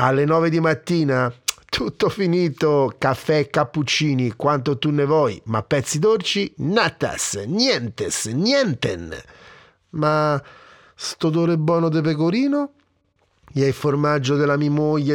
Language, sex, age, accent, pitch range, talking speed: Italian, male, 40-59, native, 100-145 Hz, 125 wpm